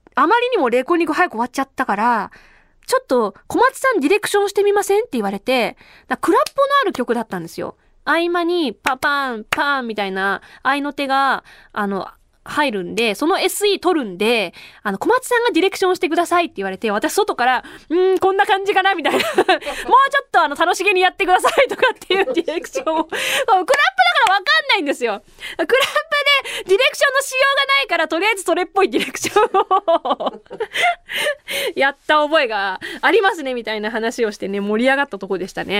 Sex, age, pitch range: female, 20-39, 215-345 Hz